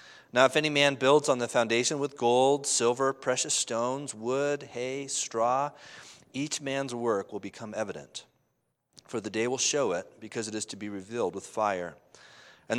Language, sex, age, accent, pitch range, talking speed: English, male, 40-59, American, 110-135 Hz, 175 wpm